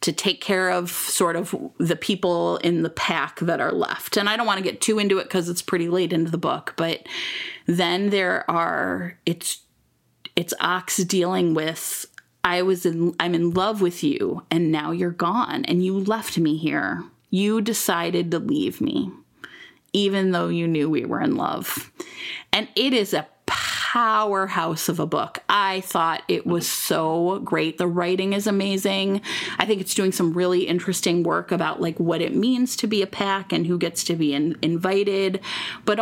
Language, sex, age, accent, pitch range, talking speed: English, female, 30-49, American, 170-200 Hz, 185 wpm